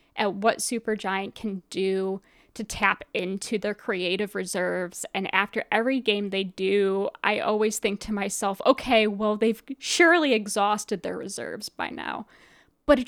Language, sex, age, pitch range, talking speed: English, female, 10-29, 190-230 Hz, 150 wpm